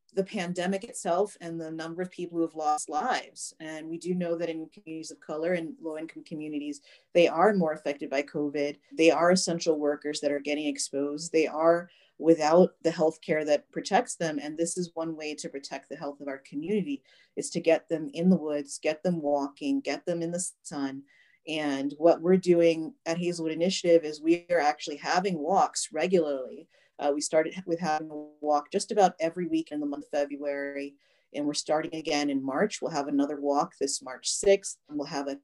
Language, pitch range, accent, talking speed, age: English, 145-175 Hz, American, 205 wpm, 40-59